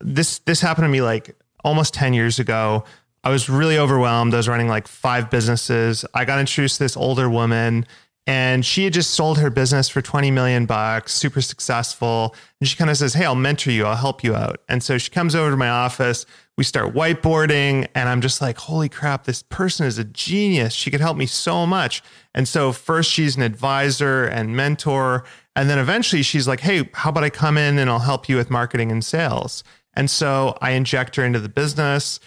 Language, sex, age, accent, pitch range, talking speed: English, male, 30-49, American, 120-150 Hz, 215 wpm